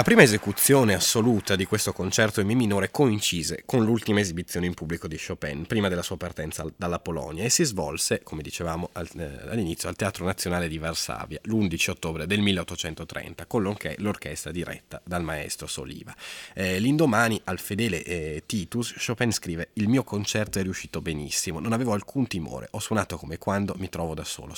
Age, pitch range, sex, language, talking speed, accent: 30-49, 85-105 Hz, male, Italian, 170 wpm, native